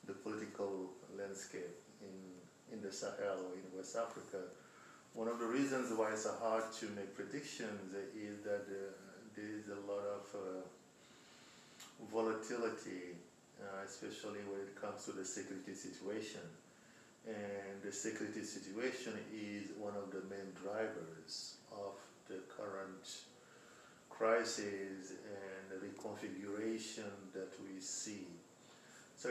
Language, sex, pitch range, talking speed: English, male, 95-110 Hz, 125 wpm